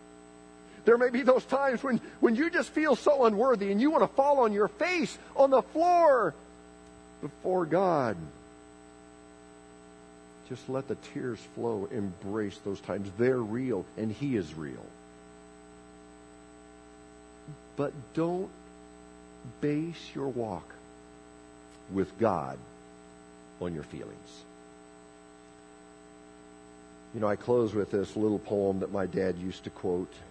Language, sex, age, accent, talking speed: English, male, 50-69, American, 125 wpm